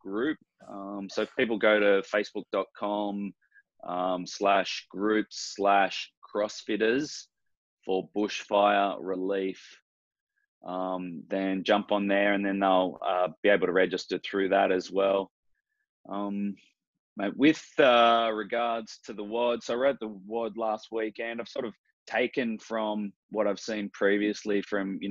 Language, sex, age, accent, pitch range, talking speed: English, male, 20-39, Australian, 100-110 Hz, 130 wpm